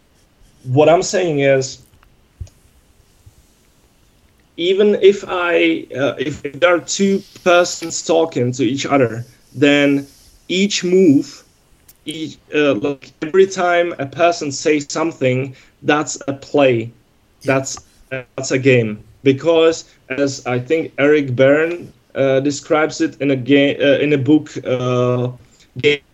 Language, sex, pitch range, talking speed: English, male, 125-160 Hz, 125 wpm